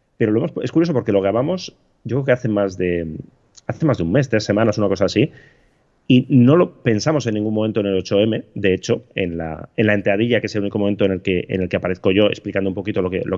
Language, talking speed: Spanish, 270 wpm